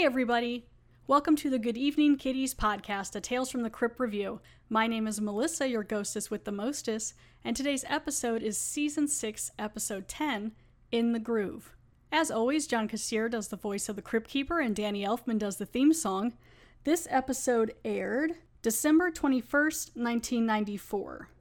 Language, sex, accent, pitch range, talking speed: English, female, American, 210-255 Hz, 165 wpm